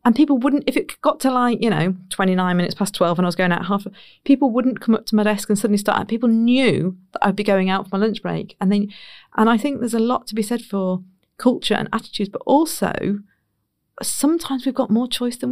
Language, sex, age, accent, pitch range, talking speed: English, female, 40-59, British, 195-235 Hz, 250 wpm